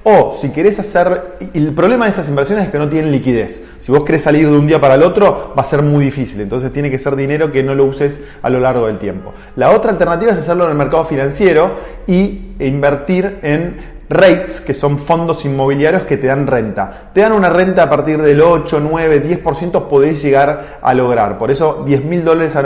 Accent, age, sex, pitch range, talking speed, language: Argentinian, 20-39, male, 130-160 Hz, 215 wpm, Spanish